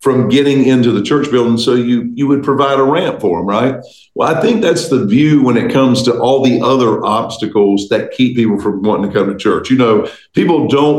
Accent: American